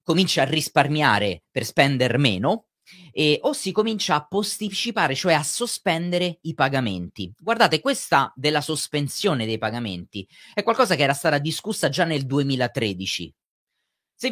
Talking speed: 135 wpm